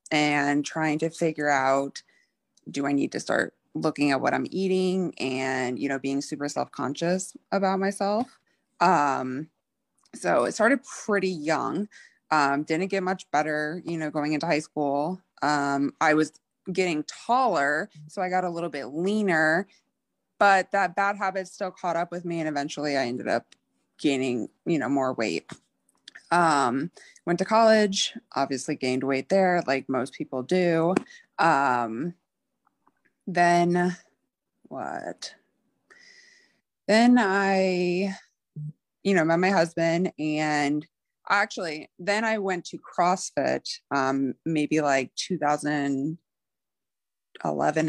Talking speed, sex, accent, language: 130 wpm, female, American, English